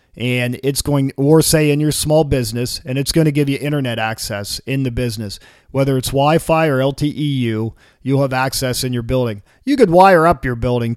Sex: male